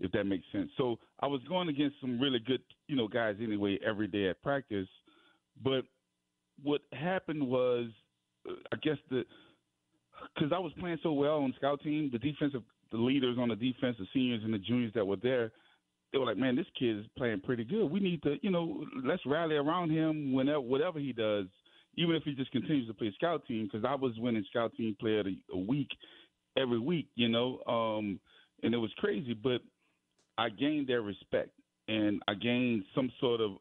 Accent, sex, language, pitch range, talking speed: American, male, English, 105-135 Hz, 205 wpm